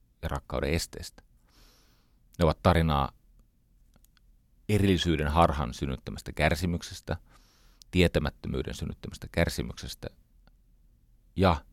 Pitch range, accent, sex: 70-95 Hz, native, male